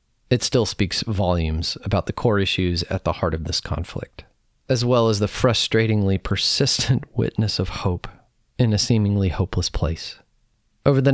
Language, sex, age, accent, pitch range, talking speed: English, male, 30-49, American, 90-115 Hz, 160 wpm